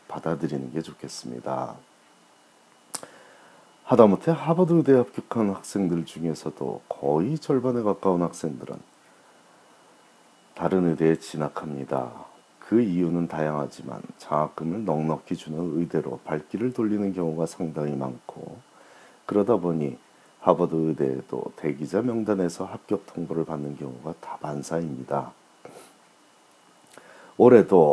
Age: 40-59